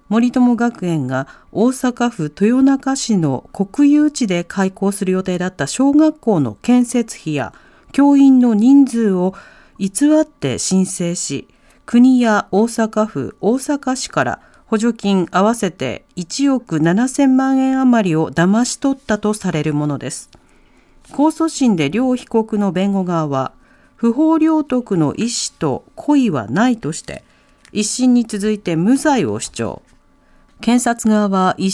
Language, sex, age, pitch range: Japanese, female, 40-59, 180-255 Hz